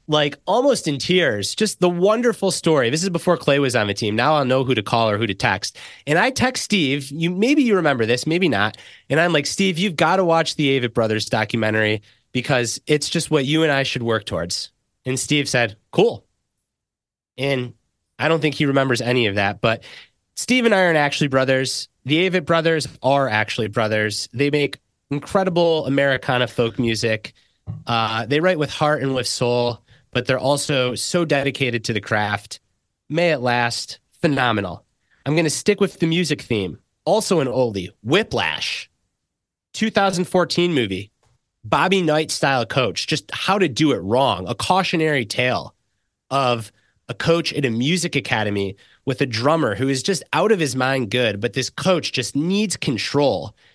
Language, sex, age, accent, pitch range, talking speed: English, male, 30-49, American, 120-160 Hz, 180 wpm